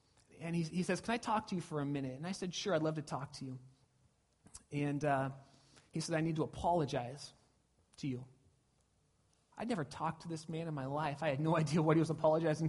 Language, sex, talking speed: English, male, 230 wpm